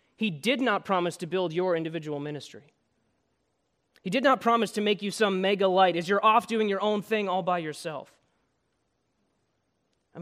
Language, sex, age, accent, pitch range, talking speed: English, male, 30-49, American, 165-205 Hz, 175 wpm